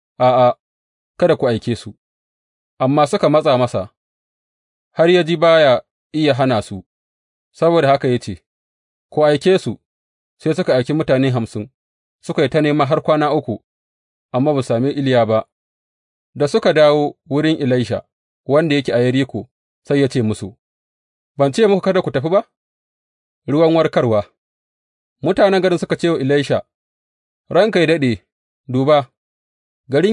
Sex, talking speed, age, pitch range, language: male, 120 wpm, 30-49, 105-155 Hz, English